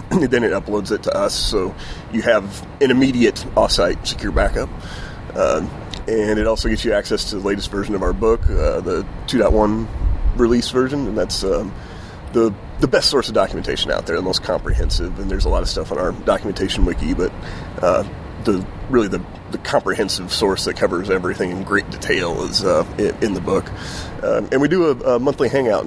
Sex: male